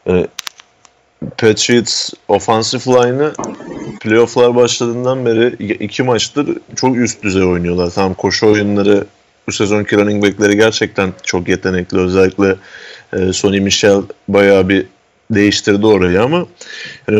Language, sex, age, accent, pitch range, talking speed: Turkish, male, 30-49, native, 100-125 Hz, 110 wpm